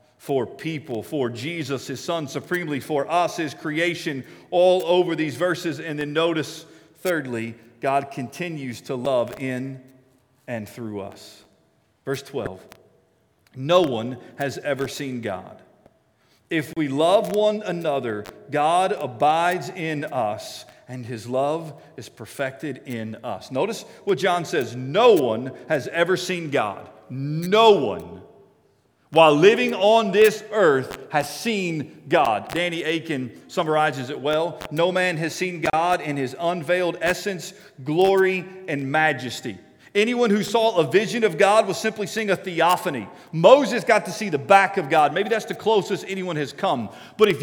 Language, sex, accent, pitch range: English, male, American, 140-195 Hz